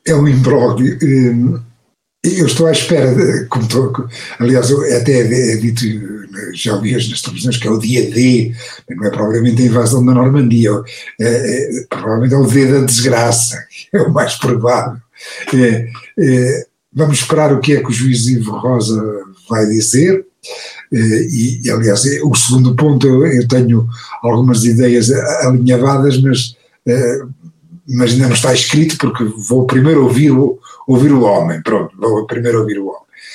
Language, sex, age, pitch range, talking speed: Portuguese, male, 60-79, 120-170 Hz, 160 wpm